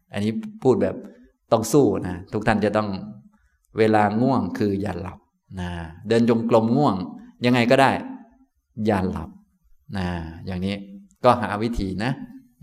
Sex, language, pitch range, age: male, Thai, 100-160 Hz, 20-39